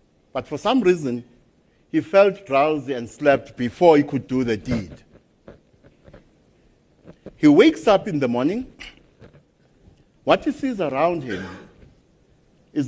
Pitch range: 120-180 Hz